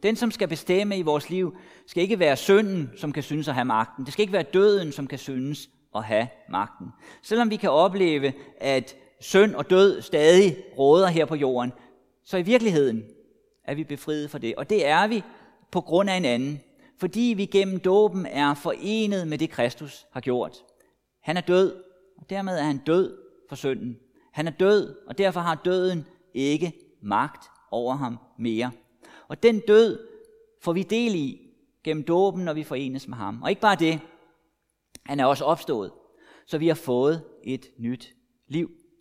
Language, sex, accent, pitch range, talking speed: Danish, male, native, 140-195 Hz, 185 wpm